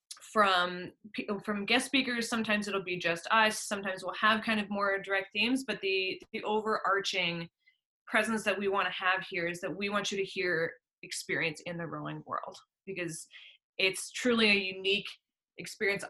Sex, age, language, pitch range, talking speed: female, 20-39, English, 185-220 Hz, 175 wpm